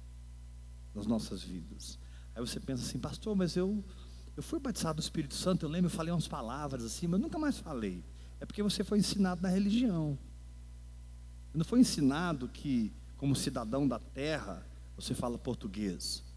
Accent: Brazilian